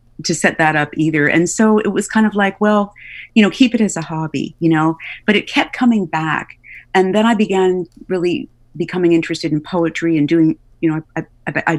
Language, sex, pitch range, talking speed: English, female, 150-195 Hz, 220 wpm